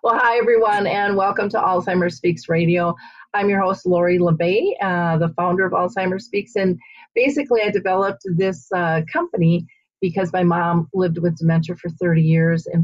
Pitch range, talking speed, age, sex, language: 170-195 Hz, 175 wpm, 40-59, female, English